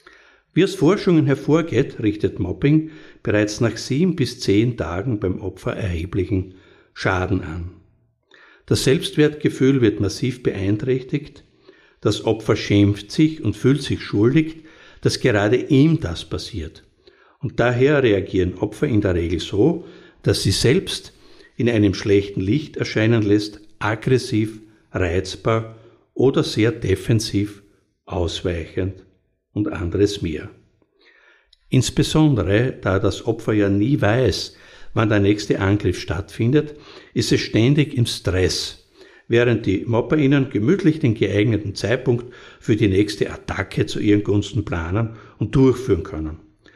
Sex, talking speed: male, 125 wpm